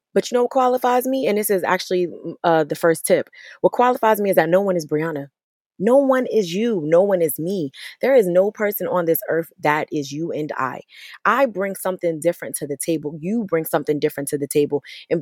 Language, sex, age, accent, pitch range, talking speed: English, female, 20-39, American, 160-220 Hz, 230 wpm